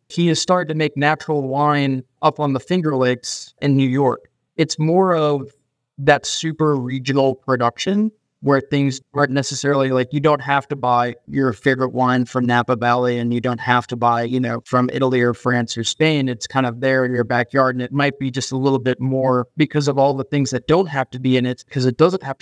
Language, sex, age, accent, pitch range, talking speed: English, male, 30-49, American, 125-145 Hz, 225 wpm